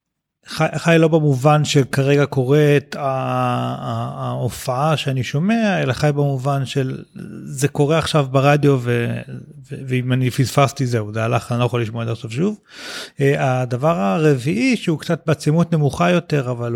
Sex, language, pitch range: male, Hebrew, 125-155 Hz